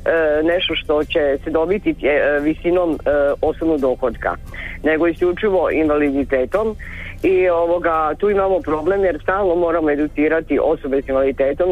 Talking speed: 115 wpm